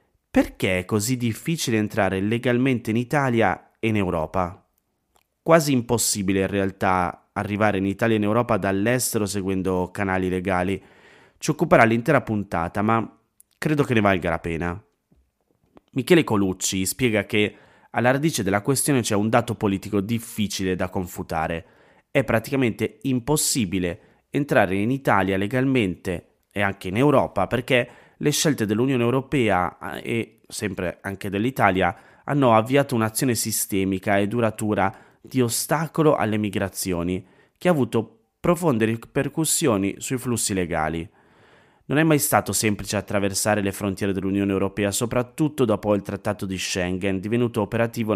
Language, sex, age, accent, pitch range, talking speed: Italian, male, 30-49, native, 95-125 Hz, 135 wpm